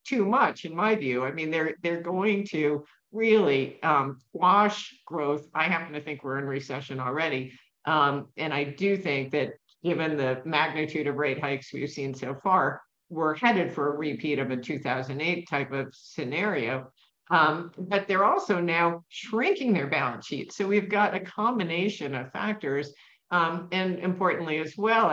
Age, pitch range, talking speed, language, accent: 50-69, 145-180 Hz, 170 wpm, English, American